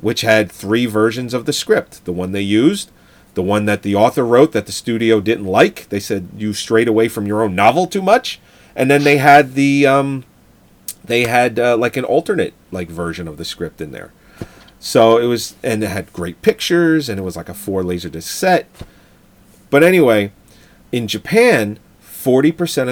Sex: male